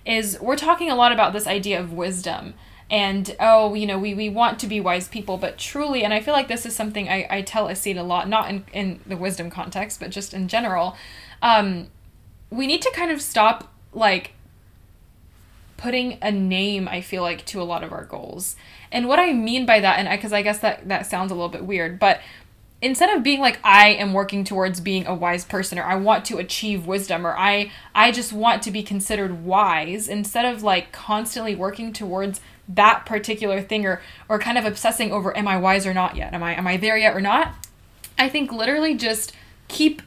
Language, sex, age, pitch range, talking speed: English, female, 10-29, 190-240 Hz, 220 wpm